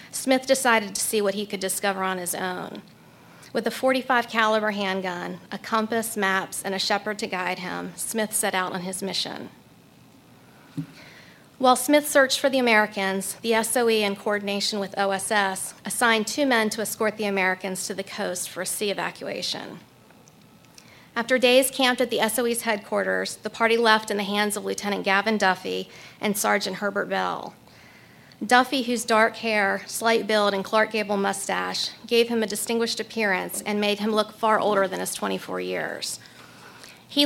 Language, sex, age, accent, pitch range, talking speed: English, female, 40-59, American, 195-225 Hz, 165 wpm